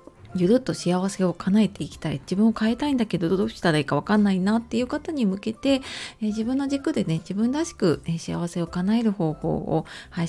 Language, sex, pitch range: Japanese, female, 160-220 Hz